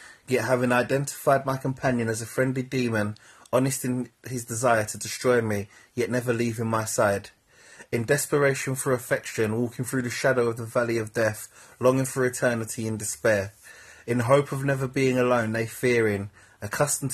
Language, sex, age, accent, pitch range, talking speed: English, male, 30-49, British, 110-130 Hz, 170 wpm